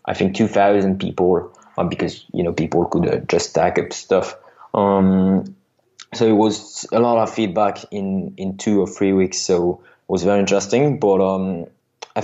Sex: male